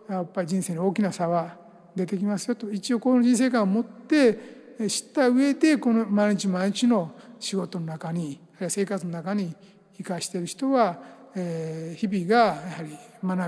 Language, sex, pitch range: Japanese, male, 180-230 Hz